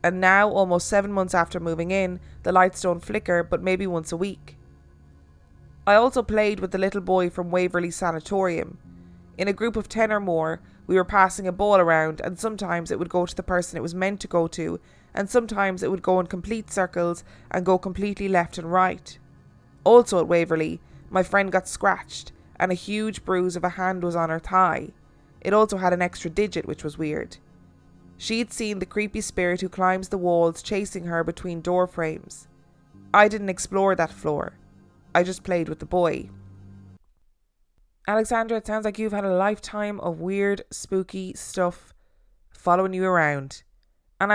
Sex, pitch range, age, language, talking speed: female, 160-195 Hz, 20-39, English, 185 wpm